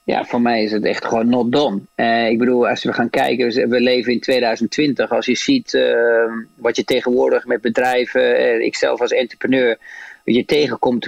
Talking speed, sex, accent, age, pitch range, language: 195 wpm, male, Dutch, 40-59, 125-155 Hz, Dutch